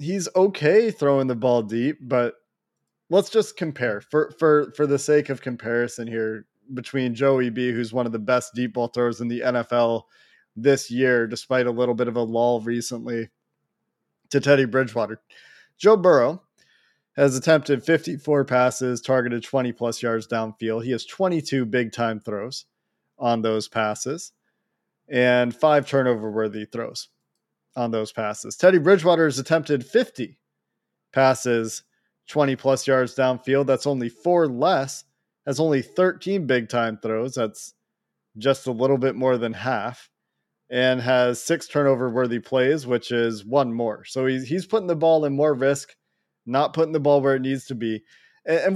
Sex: male